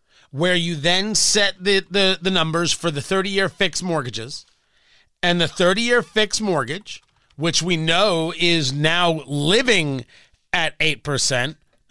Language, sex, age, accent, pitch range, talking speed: English, male, 40-59, American, 155-230 Hz, 130 wpm